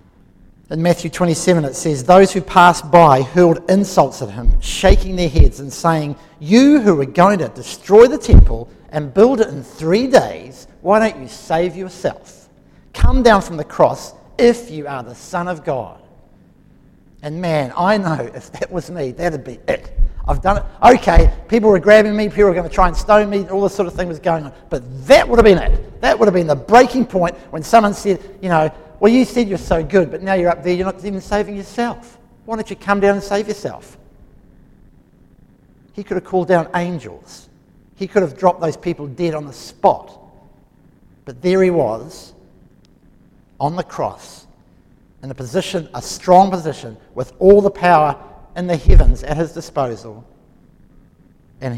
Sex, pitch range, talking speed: male, 150-200 Hz, 195 wpm